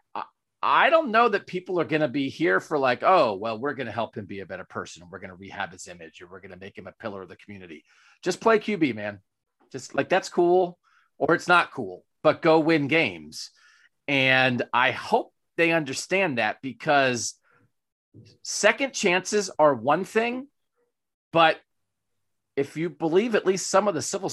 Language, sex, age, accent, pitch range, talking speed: English, male, 40-59, American, 130-185 Hz, 195 wpm